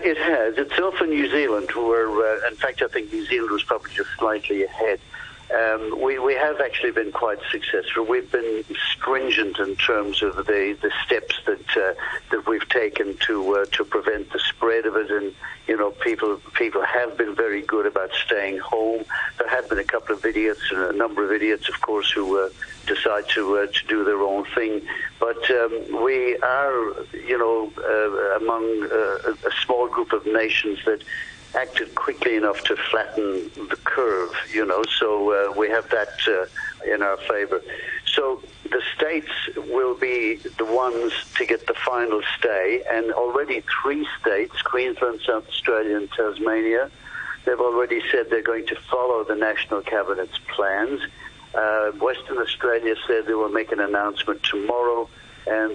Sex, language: male, English